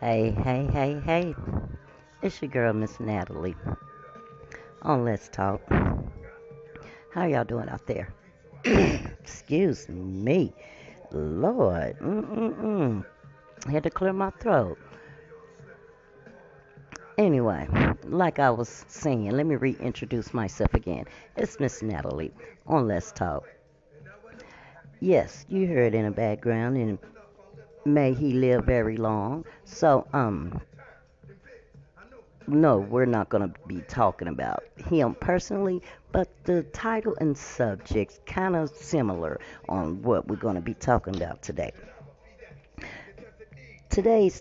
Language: English